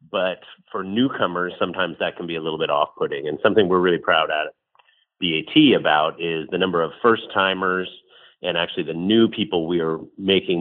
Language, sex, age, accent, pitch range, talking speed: English, male, 40-59, American, 85-115 Hz, 180 wpm